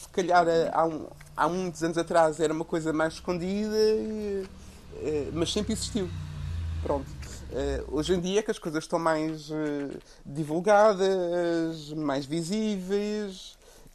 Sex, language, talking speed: male, Portuguese, 125 wpm